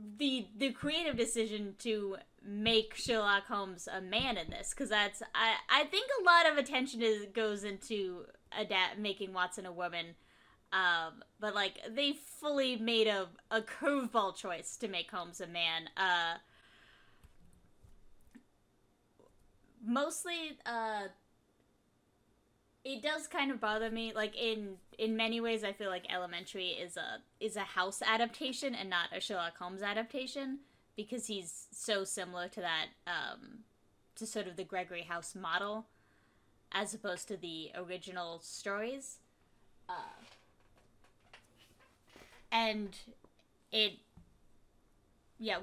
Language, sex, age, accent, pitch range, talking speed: English, female, 10-29, American, 185-230 Hz, 130 wpm